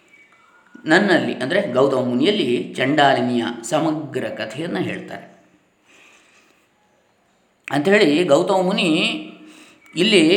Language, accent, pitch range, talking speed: Kannada, native, 130-195 Hz, 70 wpm